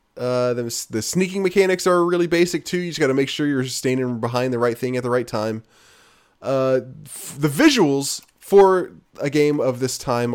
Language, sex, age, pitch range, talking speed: English, male, 20-39, 125-165 Hz, 205 wpm